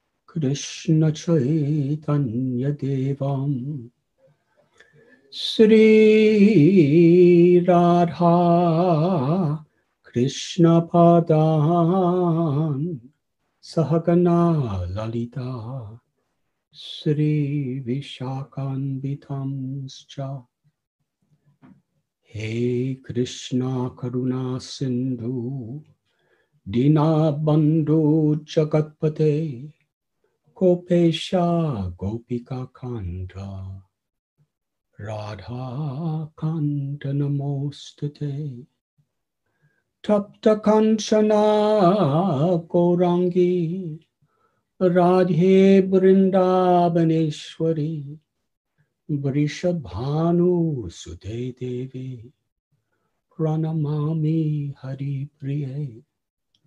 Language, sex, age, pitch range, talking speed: English, male, 60-79, 130-170 Hz, 35 wpm